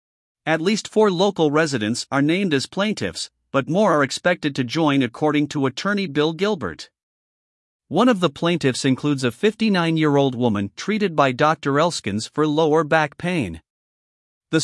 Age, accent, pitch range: 50-69, American, 130-170 Hz